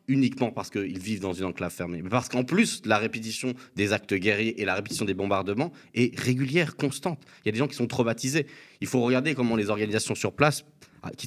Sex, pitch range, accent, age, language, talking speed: male, 105-140 Hz, French, 30-49, French, 225 wpm